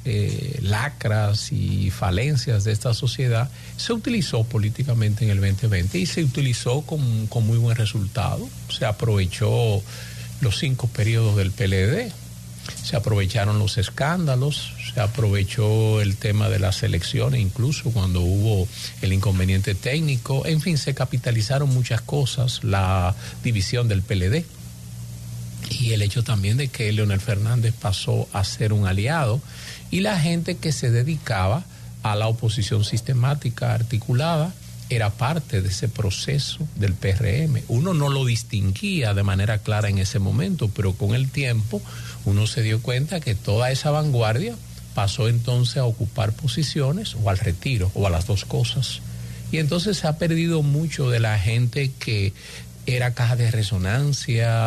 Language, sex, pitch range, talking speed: English, male, 105-130 Hz, 150 wpm